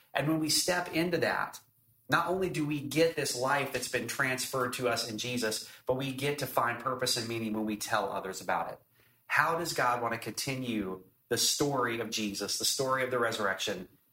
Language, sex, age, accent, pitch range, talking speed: English, male, 30-49, American, 120-145 Hz, 210 wpm